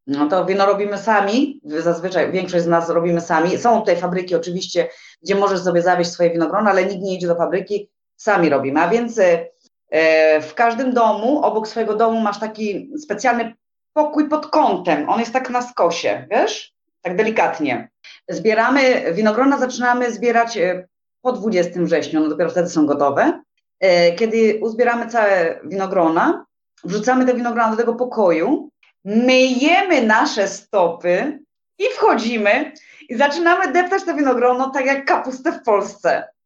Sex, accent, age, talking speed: female, native, 30-49, 145 wpm